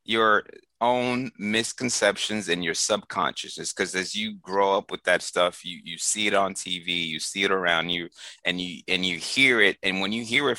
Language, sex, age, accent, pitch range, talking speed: English, male, 30-49, American, 85-105 Hz, 205 wpm